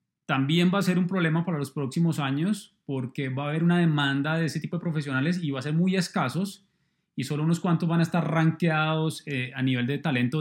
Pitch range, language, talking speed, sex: 145-175 Hz, Spanish, 225 wpm, male